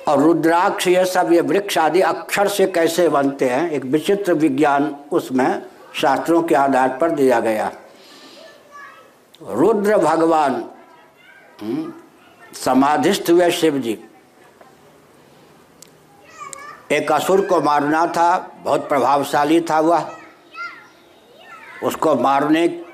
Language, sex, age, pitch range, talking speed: Hindi, male, 60-79, 150-190 Hz, 100 wpm